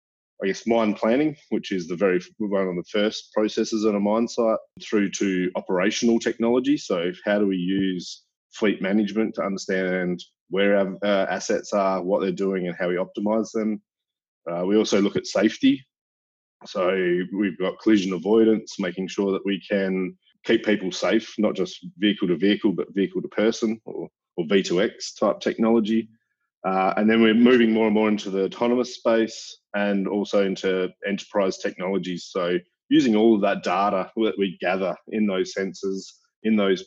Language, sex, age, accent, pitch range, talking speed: English, male, 20-39, Australian, 95-110 Hz, 175 wpm